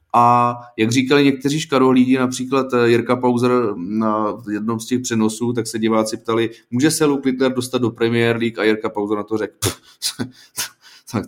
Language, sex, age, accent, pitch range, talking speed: Czech, male, 30-49, native, 110-130 Hz, 170 wpm